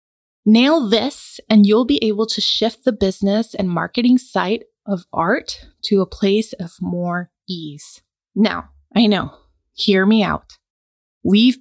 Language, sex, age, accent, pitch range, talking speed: English, female, 20-39, American, 190-250 Hz, 145 wpm